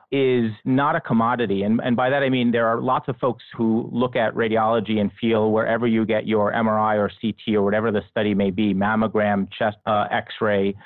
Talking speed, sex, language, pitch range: 210 wpm, male, English, 110-125 Hz